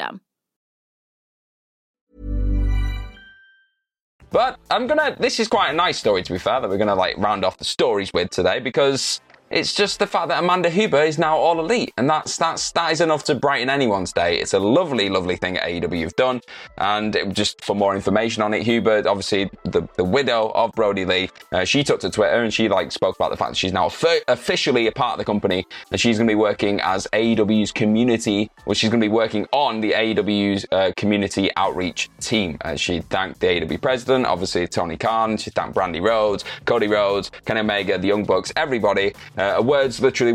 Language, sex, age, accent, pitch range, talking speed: English, male, 20-39, British, 100-140 Hz, 200 wpm